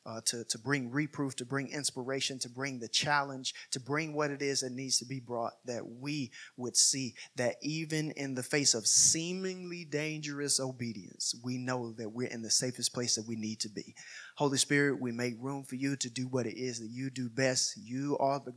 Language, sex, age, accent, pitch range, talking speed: English, male, 30-49, American, 115-140 Hz, 215 wpm